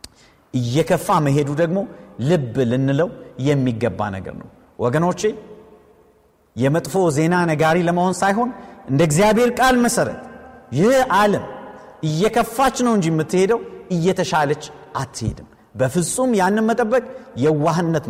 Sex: male